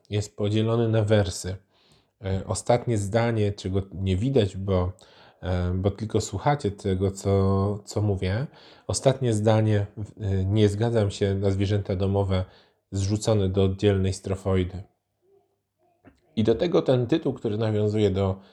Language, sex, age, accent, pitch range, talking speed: Polish, male, 20-39, native, 100-115 Hz, 120 wpm